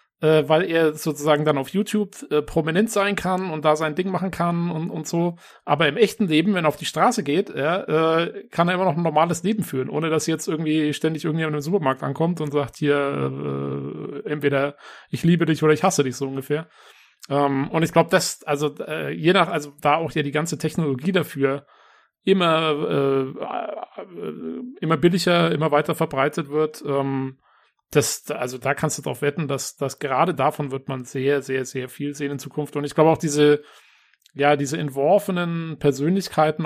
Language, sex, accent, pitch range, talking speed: German, male, German, 135-160 Hz, 195 wpm